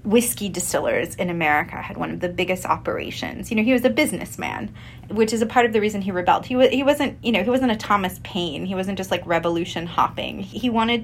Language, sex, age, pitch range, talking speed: English, female, 20-39, 180-230 Hz, 235 wpm